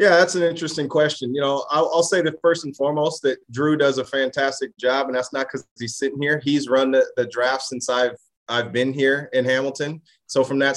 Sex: male